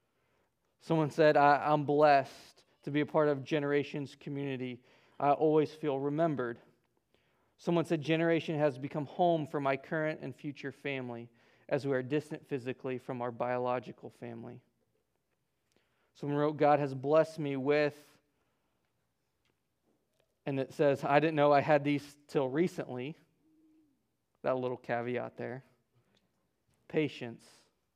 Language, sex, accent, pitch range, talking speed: English, male, American, 130-150 Hz, 125 wpm